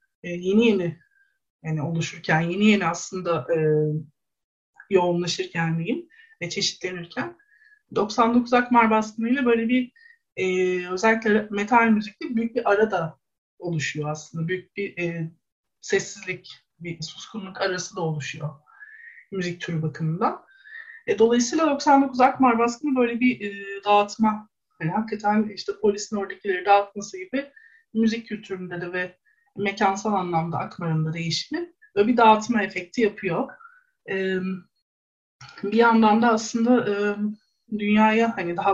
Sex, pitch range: male, 175-235 Hz